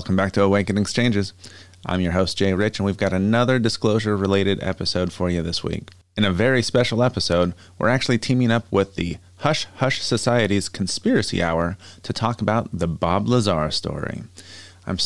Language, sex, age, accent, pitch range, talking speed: English, male, 30-49, American, 90-115 Hz, 175 wpm